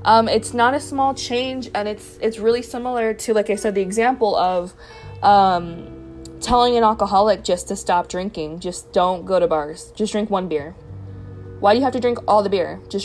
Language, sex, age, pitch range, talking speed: English, female, 20-39, 180-225 Hz, 205 wpm